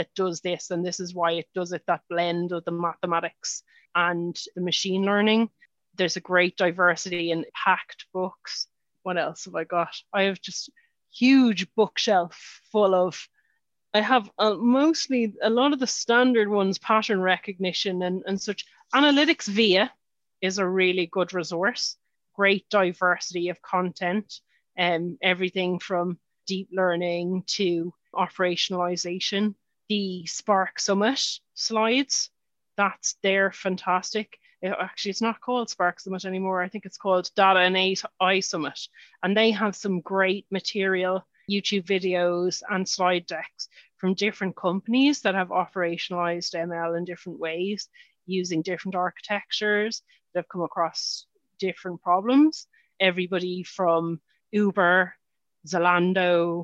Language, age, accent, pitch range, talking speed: English, 30-49, Irish, 180-210 Hz, 140 wpm